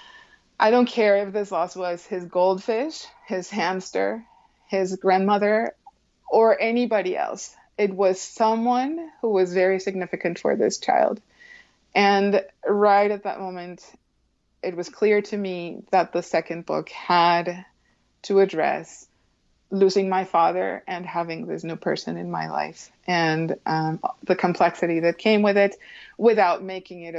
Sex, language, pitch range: female, English, 170-205 Hz